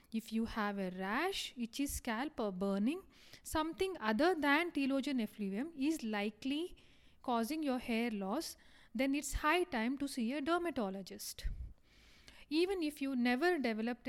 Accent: Indian